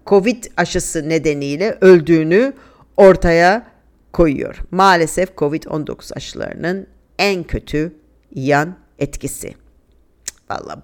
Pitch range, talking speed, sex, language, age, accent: 165-230 Hz, 80 wpm, female, Turkish, 50-69, native